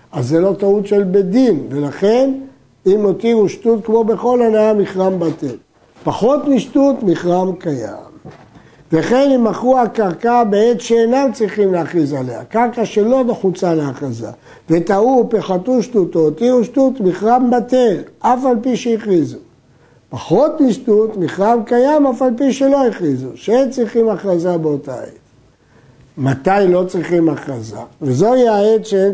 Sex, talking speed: male, 140 wpm